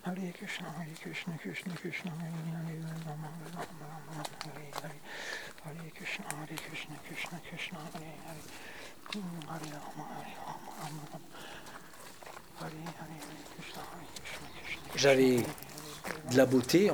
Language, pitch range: French, 115-160 Hz